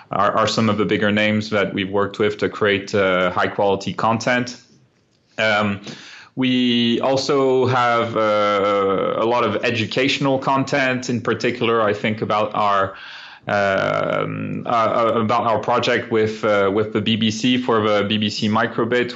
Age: 30-49